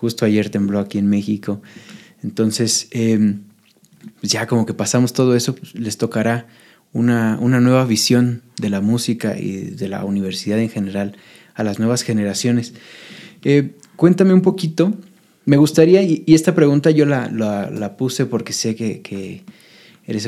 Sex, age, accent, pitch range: male, 20-39, Mexican, 110-140 Hz